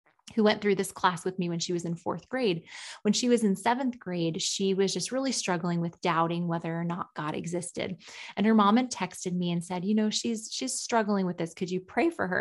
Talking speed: 245 wpm